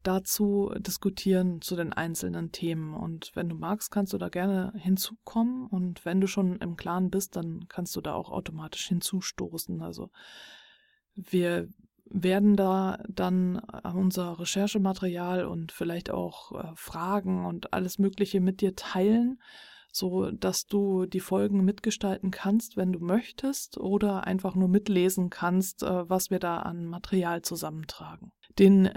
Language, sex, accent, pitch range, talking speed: German, female, German, 180-210 Hz, 140 wpm